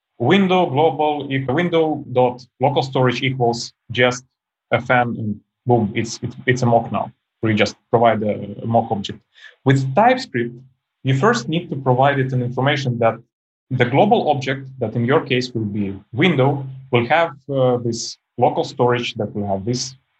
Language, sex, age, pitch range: English, male, 30-49, 115-140 Hz